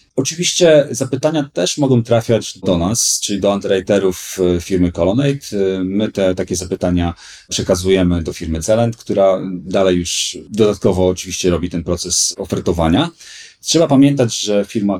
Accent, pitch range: native, 90-110 Hz